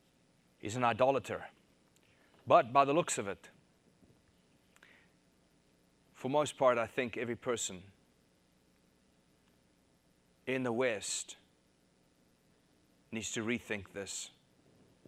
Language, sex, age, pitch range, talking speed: English, male, 30-49, 95-130 Hz, 95 wpm